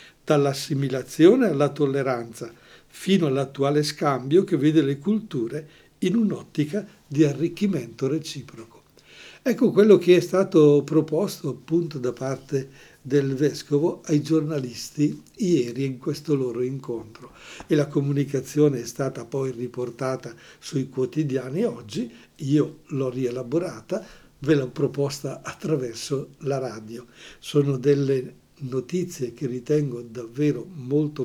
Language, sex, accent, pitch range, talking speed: Portuguese, male, Italian, 130-160 Hz, 115 wpm